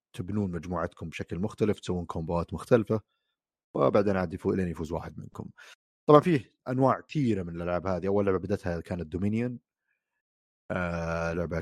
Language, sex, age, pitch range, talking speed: Arabic, male, 30-49, 85-115 Hz, 145 wpm